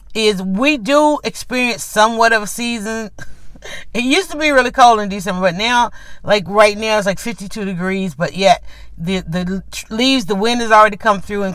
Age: 40-59